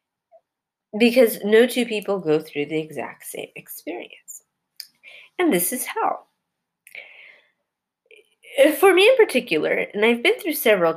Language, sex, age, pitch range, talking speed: English, female, 30-49, 180-295 Hz, 125 wpm